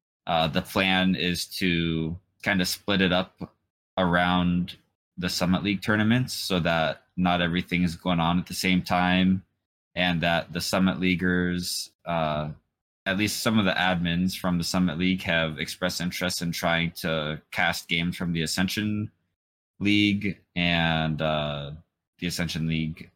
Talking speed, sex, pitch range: 155 wpm, male, 80-95 Hz